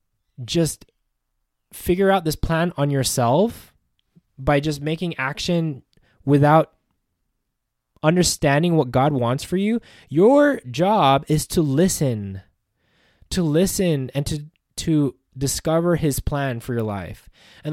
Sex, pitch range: male, 125-160 Hz